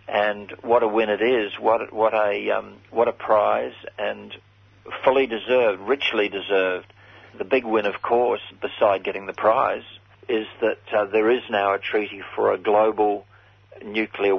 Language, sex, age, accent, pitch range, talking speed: English, male, 50-69, Australian, 100-110 Hz, 165 wpm